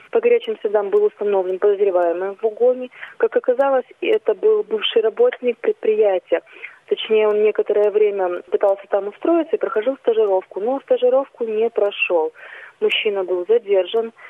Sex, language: female, Russian